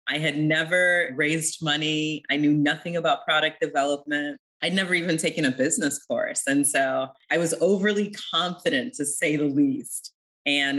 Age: 30-49